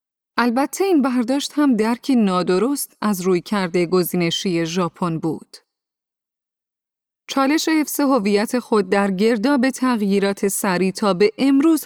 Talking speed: 110 wpm